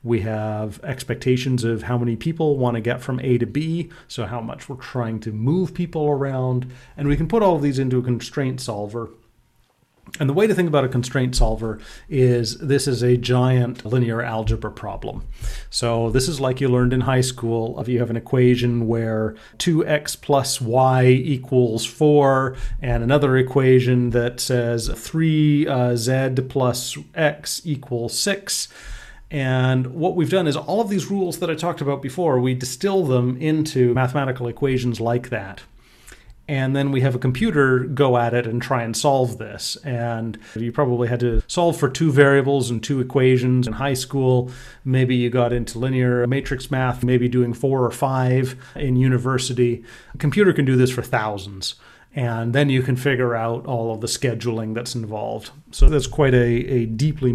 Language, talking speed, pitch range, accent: English, 180 wpm, 120-140 Hz, American